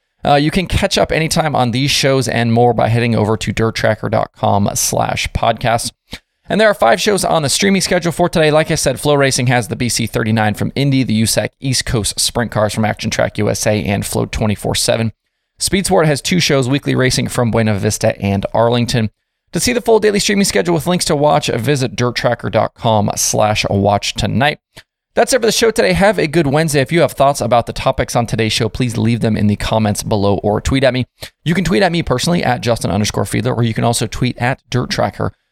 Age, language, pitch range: 20-39, English, 110-150 Hz